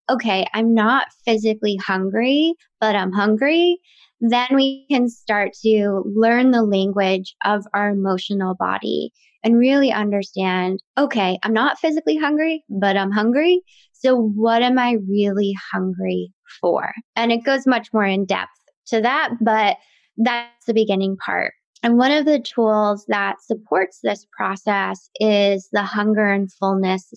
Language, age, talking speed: English, 20-39, 145 wpm